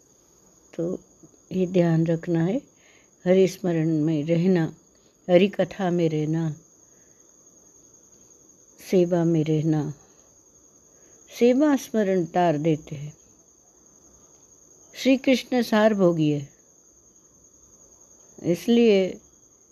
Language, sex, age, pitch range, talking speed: Hindi, female, 60-79, 160-200 Hz, 80 wpm